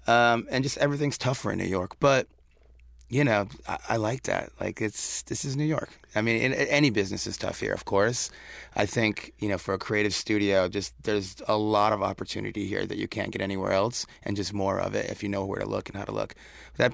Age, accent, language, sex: 30-49, American, English, male